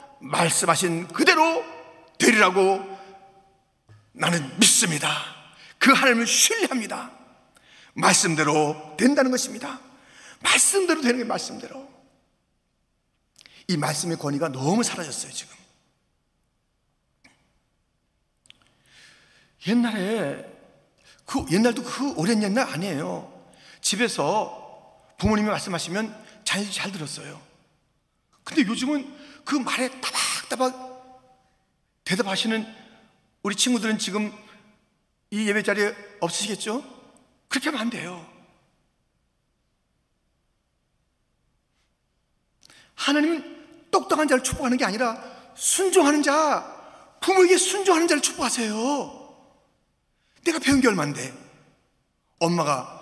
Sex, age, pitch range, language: male, 40-59, 195-275 Hz, Korean